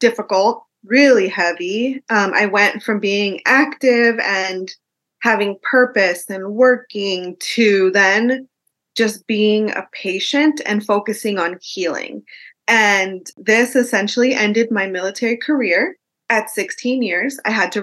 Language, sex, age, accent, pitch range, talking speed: English, female, 20-39, American, 190-230 Hz, 125 wpm